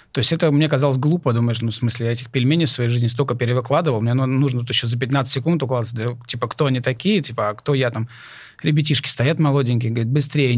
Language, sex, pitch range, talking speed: Russian, male, 125-150 Hz, 220 wpm